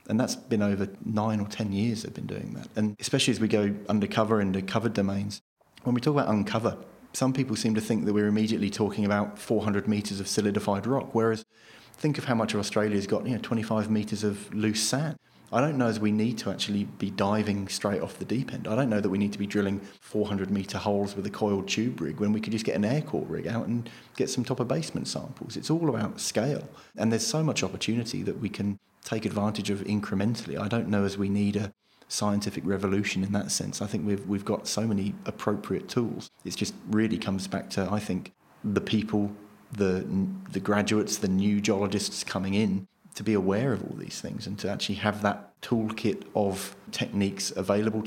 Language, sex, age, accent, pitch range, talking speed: English, male, 30-49, British, 100-110 Hz, 220 wpm